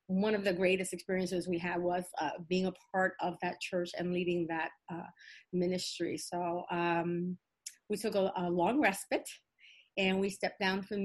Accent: American